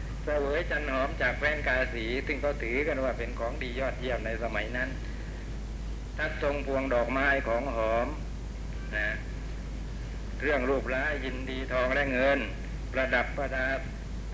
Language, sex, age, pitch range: Thai, male, 60-79, 125-140 Hz